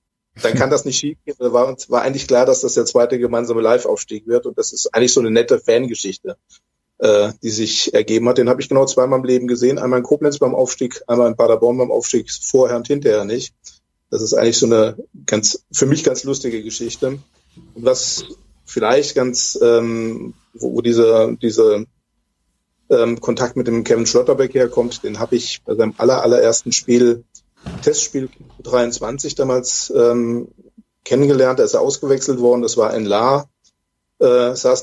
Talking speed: 175 wpm